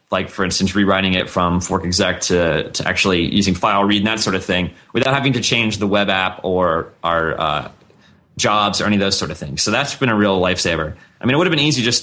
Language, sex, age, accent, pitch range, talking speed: English, male, 20-39, American, 95-120 Hz, 255 wpm